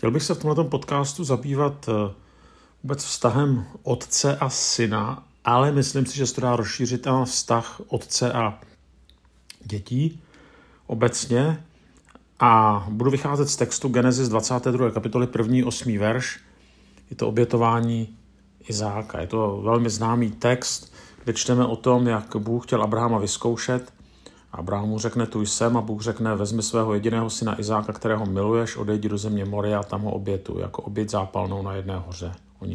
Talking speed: 155 wpm